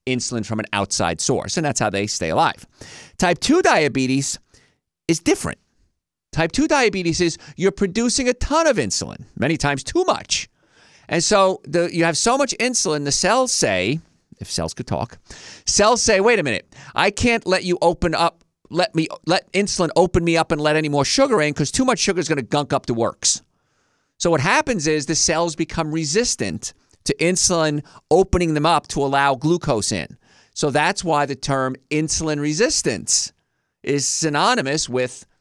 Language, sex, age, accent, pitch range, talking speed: English, male, 50-69, American, 135-185 Hz, 180 wpm